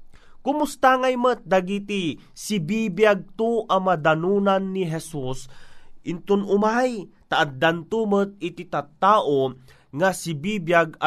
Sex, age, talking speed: male, 30-49, 100 wpm